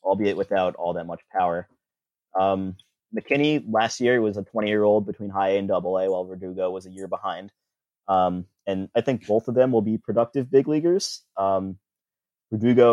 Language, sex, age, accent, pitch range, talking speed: English, male, 20-39, American, 95-110 Hz, 180 wpm